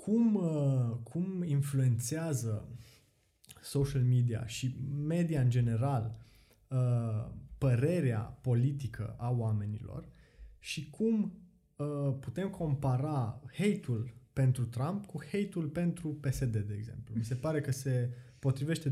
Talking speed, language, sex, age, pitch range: 100 wpm, Romanian, male, 20-39, 120-160 Hz